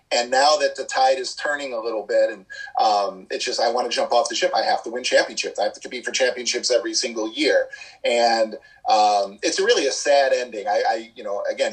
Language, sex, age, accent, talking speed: English, male, 30-49, American, 240 wpm